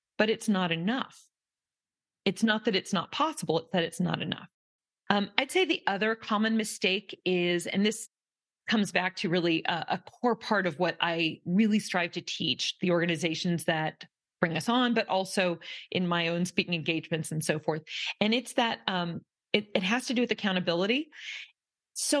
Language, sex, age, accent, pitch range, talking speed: English, female, 30-49, American, 175-220 Hz, 185 wpm